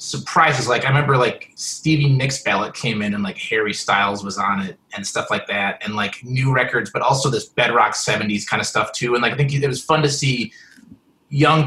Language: English